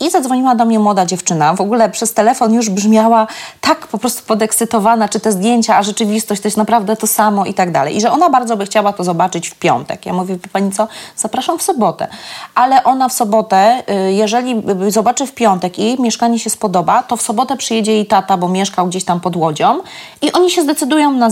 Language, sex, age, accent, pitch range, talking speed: Polish, female, 30-49, native, 195-255 Hz, 210 wpm